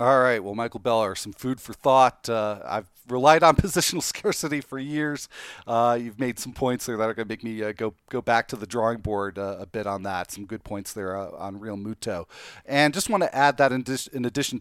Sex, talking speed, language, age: male, 240 wpm, English, 40-59